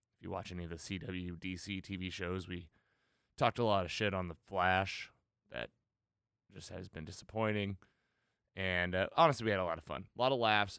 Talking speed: 200 wpm